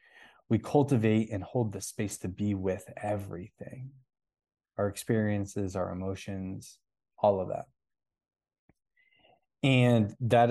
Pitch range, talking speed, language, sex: 100-125 Hz, 110 wpm, English, male